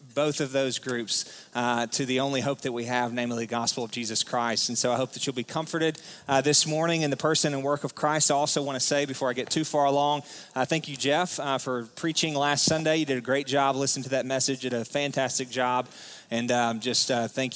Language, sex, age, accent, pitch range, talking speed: English, male, 30-49, American, 125-145 Hz, 255 wpm